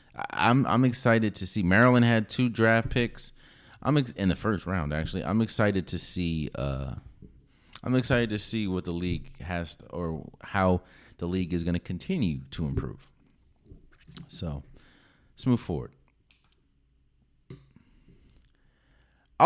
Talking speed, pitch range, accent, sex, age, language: 135 wpm, 85-115 Hz, American, male, 30-49, English